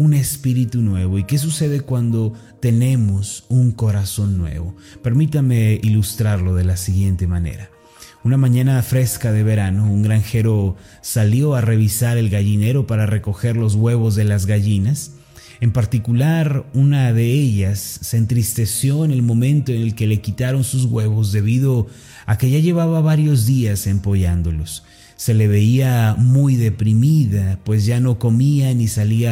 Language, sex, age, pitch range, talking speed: Spanish, male, 30-49, 105-130 Hz, 145 wpm